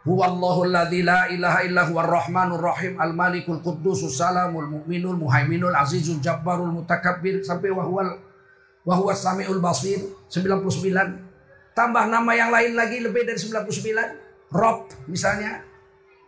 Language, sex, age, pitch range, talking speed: Indonesian, male, 50-69, 160-200 Hz, 120 wpm